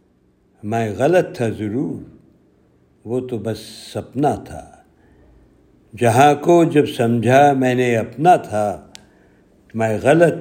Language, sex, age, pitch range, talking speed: Urdu, male, 60-79, 115-150 Hz, 110 wpm